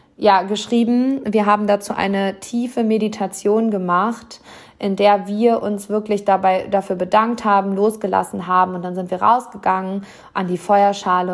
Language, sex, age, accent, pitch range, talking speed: German, female, 20-39, German, 185-210 Hz, 150 wpm